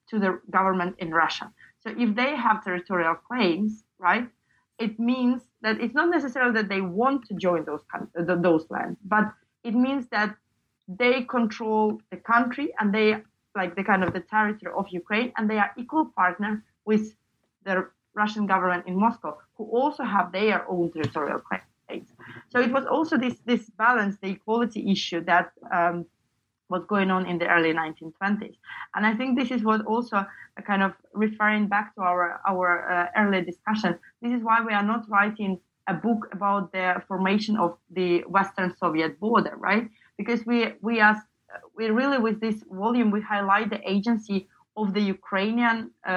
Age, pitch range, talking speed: 30-49, 185-225 Hz, 175 wpm